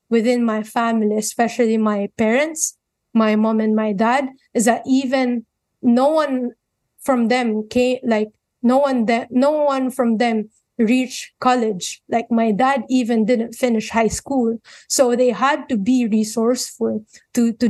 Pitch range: 230-260 Hz